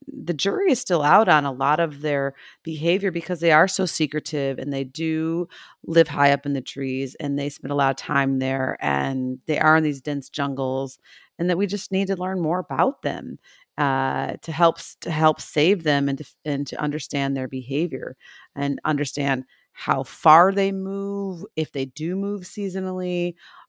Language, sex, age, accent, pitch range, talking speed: English, female, 30-49, American, 140-185 Hz, 190 wpm